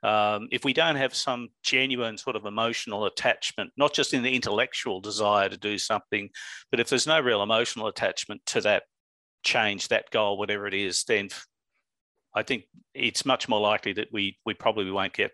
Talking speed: 190 wpm